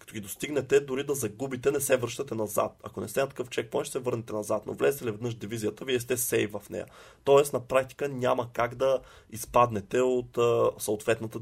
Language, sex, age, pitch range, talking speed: Bulgarian, male, 20-39, 110-130 Hz, 200 wpm